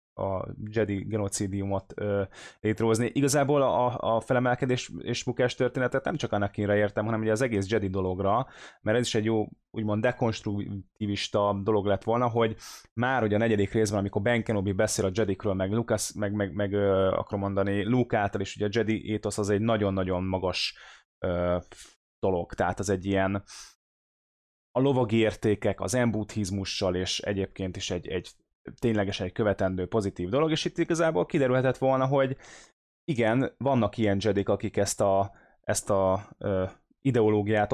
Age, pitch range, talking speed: 20-39, 100-120 Hz, 155 wpm